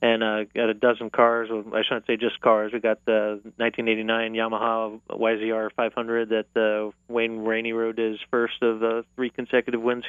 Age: 30-49